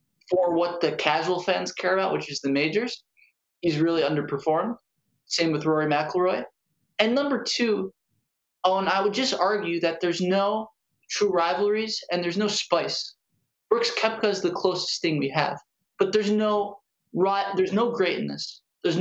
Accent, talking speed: American, 170 wpm